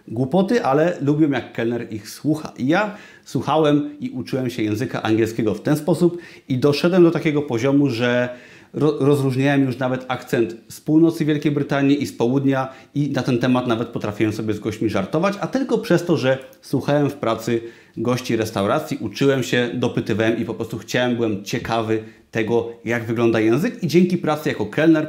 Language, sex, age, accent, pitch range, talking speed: Polish, male, 30-49, native, 115-155 Hz, 175 wpm